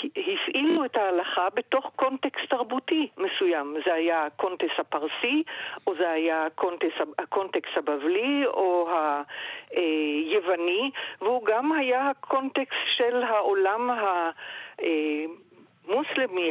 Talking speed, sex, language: 100 wpm, female, Hebrew